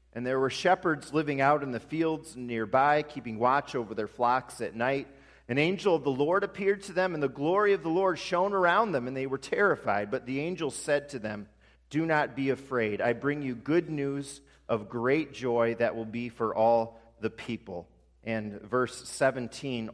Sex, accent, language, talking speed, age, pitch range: male, American, English, 200 wpm, 40-59, 100-140 Hz